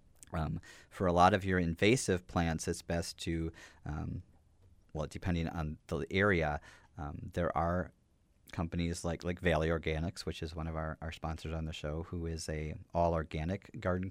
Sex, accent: male, American